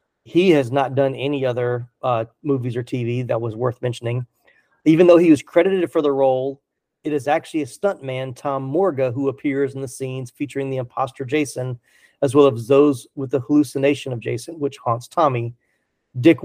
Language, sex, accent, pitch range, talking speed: English, male, American, 130-145 Hz, 185 wpm